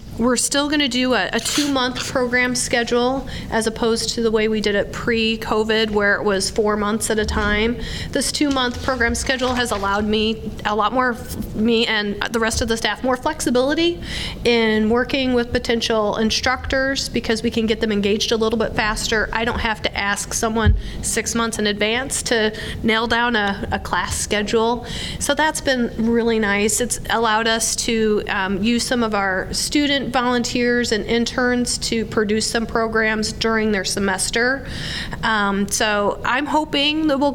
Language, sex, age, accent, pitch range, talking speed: English, female, 30-49, American, 210-250 Hz, 175 wpm